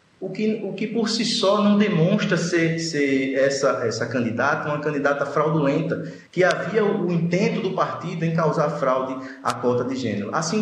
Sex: male